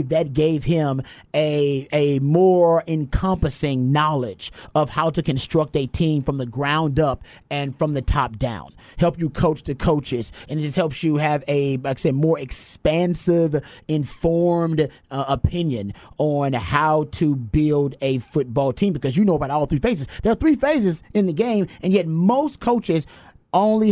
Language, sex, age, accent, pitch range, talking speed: English, male, 30-49, American, 145-195 Hz, 175 wpm